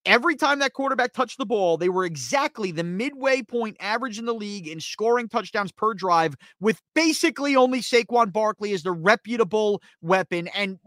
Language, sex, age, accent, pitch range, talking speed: English, male, 30-49, American, 180-260 Hz, 175 wpm